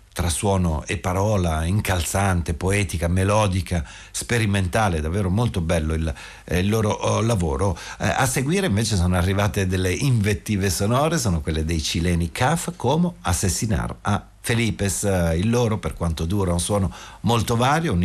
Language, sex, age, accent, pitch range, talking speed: Italian, male, 50-69, native, 85-115 Hz, 145 wpm